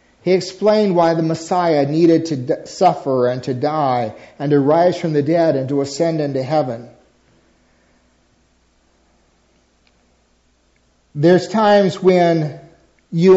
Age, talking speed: 50-69, 115 wpm